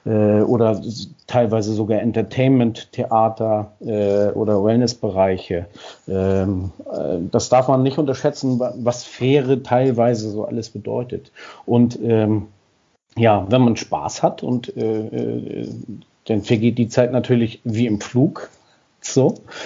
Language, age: German, 40-59